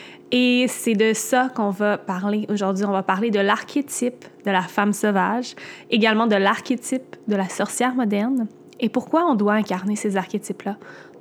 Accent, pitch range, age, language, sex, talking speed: Canadian, 195-230 Hz, 20-39, French, female, 165 wpm